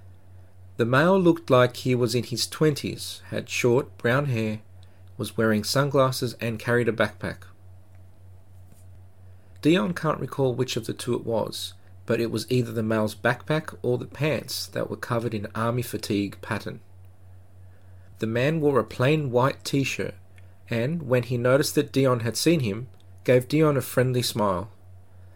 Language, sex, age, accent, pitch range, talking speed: English, male, 40-59, Australian, 95-135 Hz, 160 wpm